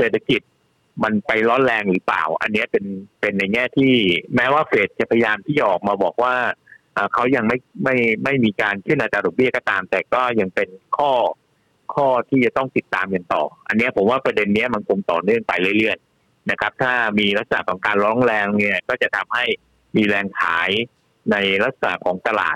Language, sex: Thai, male